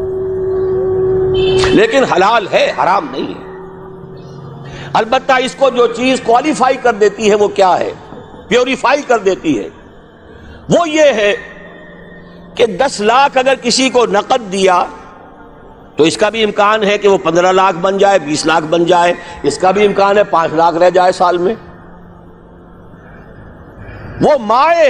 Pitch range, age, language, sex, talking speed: 180-270 Hz, 60-79, Urdu, male, 150 wpm